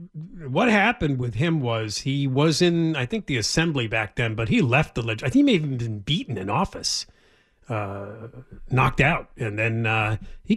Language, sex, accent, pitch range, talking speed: English, male, American, 115-155 Hz, 205 wpm